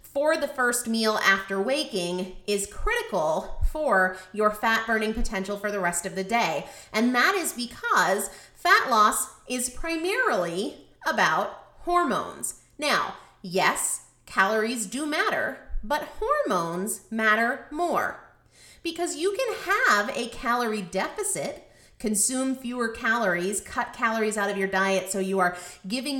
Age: 30-49